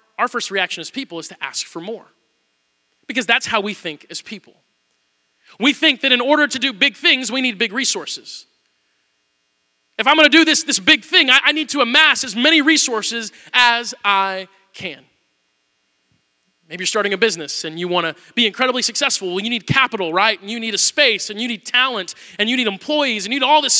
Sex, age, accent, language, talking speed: male, 20-39, American, English, 210 wpm